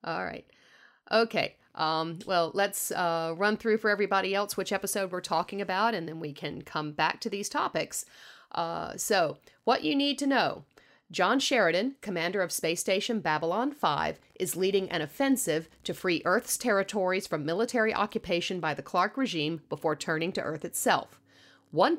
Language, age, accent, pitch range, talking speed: English, 40-59, American, 165-220 Hz, 170 wpm